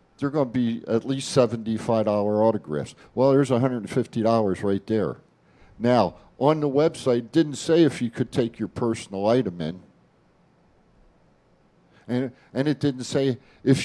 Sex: male